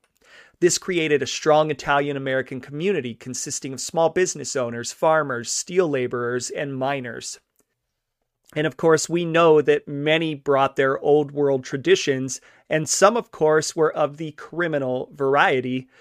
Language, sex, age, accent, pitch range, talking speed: English, male, 30-49, American, 130-160 Hz, 140 wpm